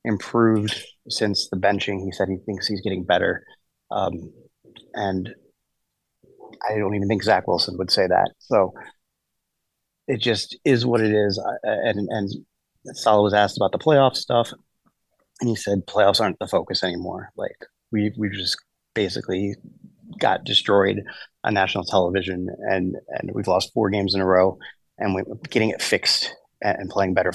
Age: 30-49